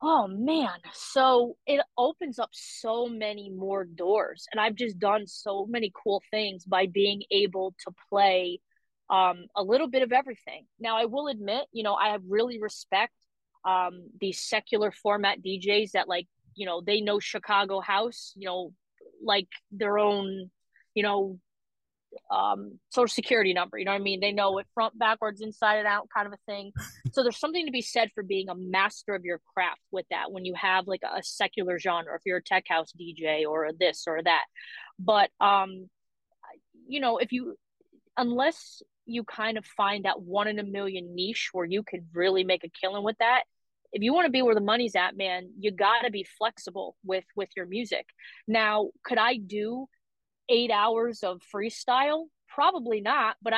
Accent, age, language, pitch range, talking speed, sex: American, 20-39, English, 190-235 Hz, 195 wpm, female